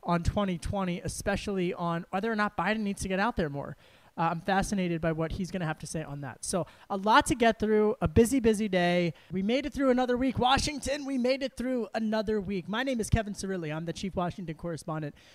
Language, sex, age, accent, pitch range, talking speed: English, male, 20-39, American, 160-205 Hz, 235 wpm